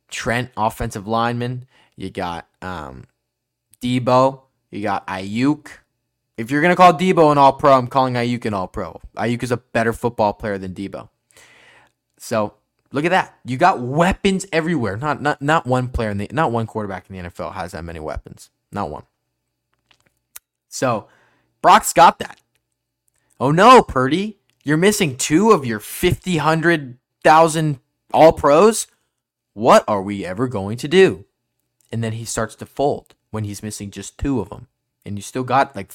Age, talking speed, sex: 20-39, 170 wpm, male